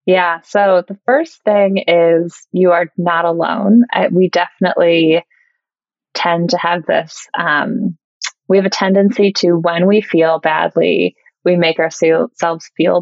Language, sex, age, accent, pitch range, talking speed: English, female, 20-39, American, 170-215 Hz, 140 wpm